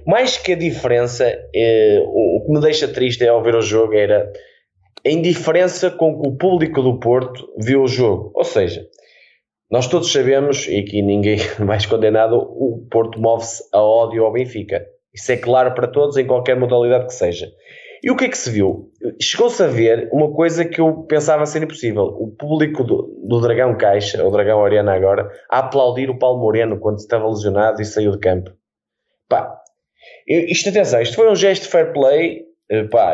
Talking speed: 185 wpm